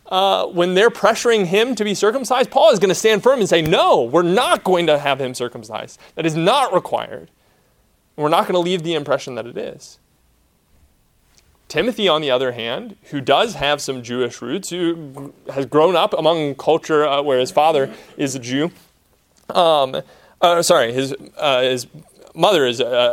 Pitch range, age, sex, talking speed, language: 130-180 Hz, 30-49, male, 185 wpm, English